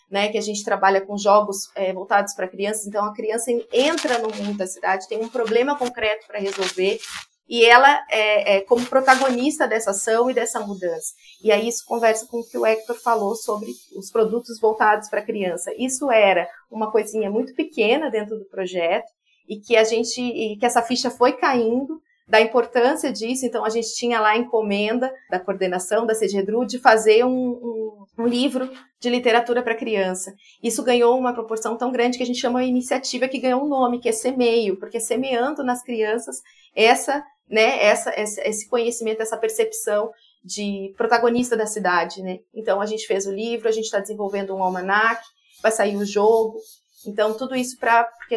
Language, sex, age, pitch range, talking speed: Portuguese, female, 30-49, 210-245 Hz, 190 wpm